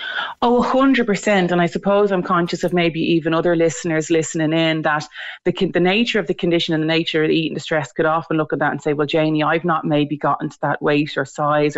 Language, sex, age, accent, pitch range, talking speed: English, female, 30-49, Irish, 155-190 Hz, 230 wpm